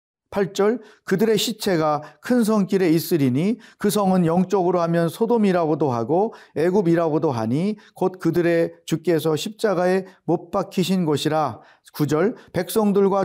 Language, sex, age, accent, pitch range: Korean, male, 40-59, native, 155-205 Hz